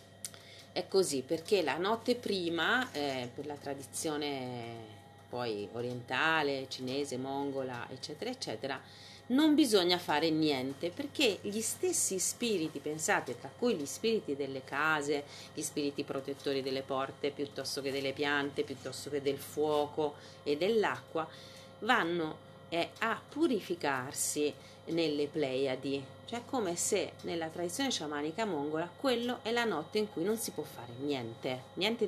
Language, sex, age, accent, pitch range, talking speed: Italian, female, 40-59, native, 135-205 Hz, 135 wpm